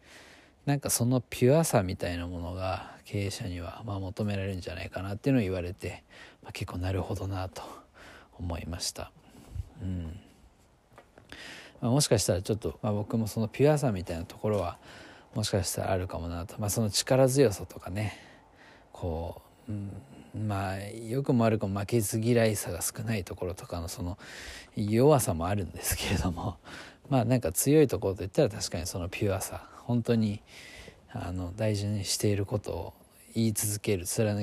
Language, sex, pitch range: Japanese, male, 90-110 Hz